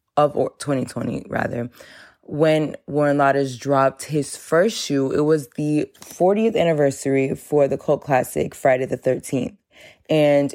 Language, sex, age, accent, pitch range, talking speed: English, female, 20-39, American, 130-150 Hz, 130 wpm